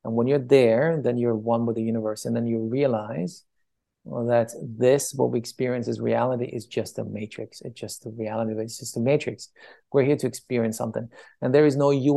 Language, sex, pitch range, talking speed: English, male, 115-135 Hz, 220 wpm